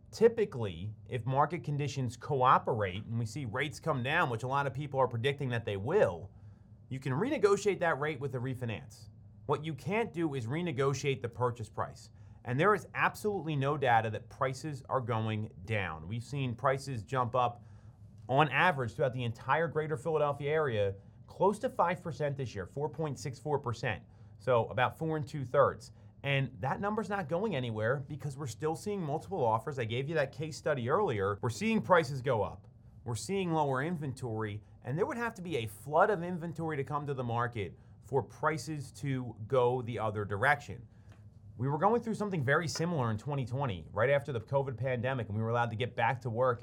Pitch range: 110-150 Hz